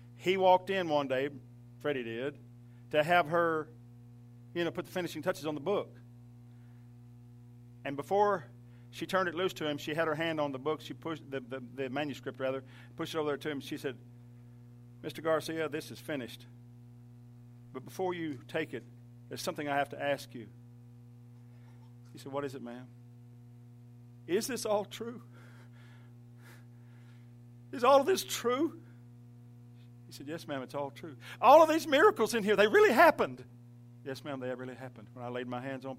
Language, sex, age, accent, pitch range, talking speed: English, male, 50-69, American, 120-140 Hz, 180 wpm